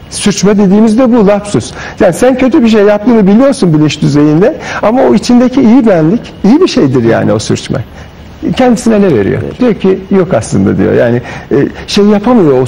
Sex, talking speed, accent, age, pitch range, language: male, 175 wpm, native, 50-69, 155-235 Hz, Turkish